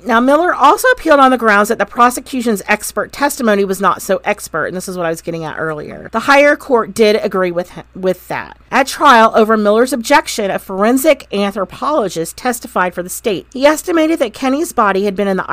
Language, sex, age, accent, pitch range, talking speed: English, female, 40-59, American, 185-240 Hz, 215 wpm